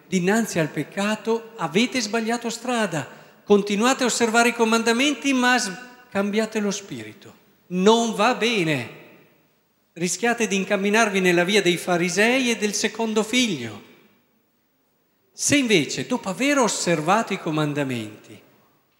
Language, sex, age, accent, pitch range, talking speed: Italian, male, 50-69, native, 150-220 Hz, 115 wpm